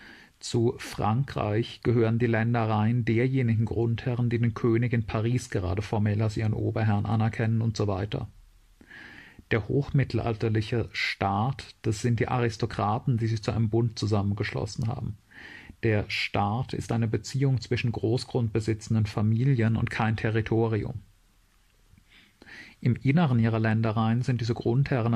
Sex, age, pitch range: male, 40-59, 110-120 Hz